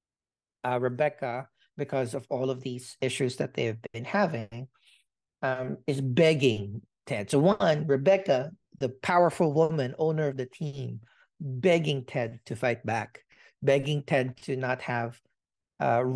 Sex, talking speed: male, 140 wpm